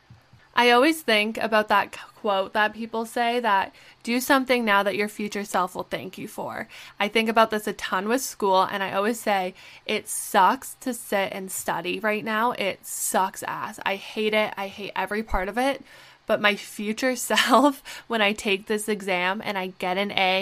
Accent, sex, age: American, female, 10-29